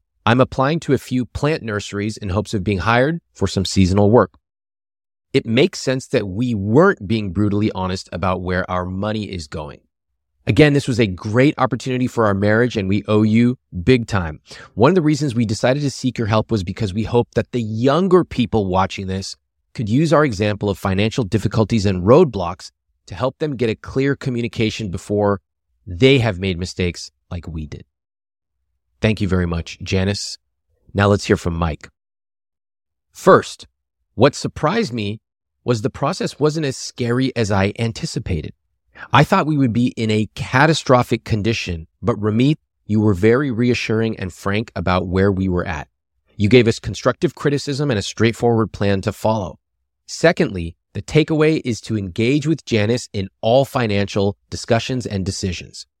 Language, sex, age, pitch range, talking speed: English, male, 30-49, 95-125 Hz, 170 wpm